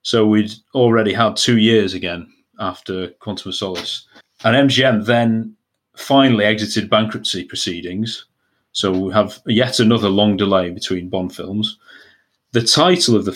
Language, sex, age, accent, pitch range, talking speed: English, male, 30-49, British, 100-120 Hz, 145 wpm